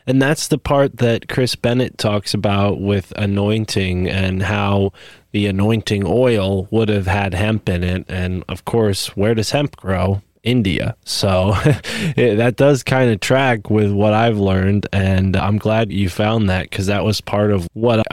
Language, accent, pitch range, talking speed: English, American, 95-115 Hz, 170 wpm